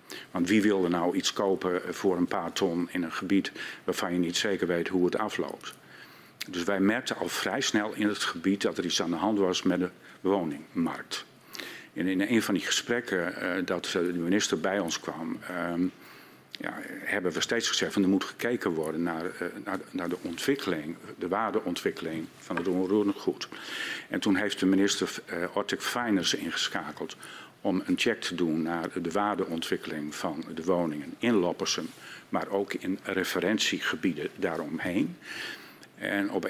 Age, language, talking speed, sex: 50-69, Dutch, 175 wpm, male